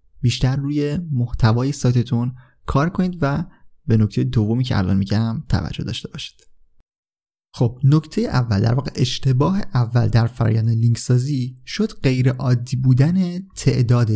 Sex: male